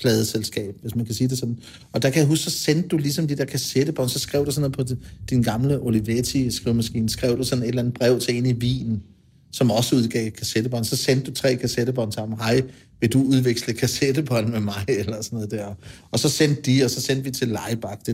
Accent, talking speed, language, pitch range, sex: native, 240 wpm, Danish, 120-150 Hz, male